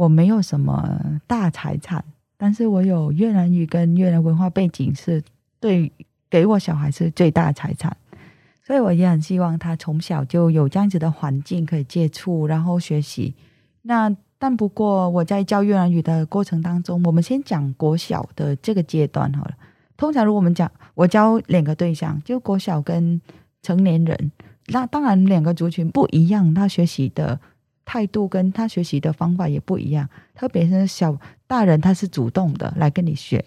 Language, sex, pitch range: Chinese, female, 155-190 Hz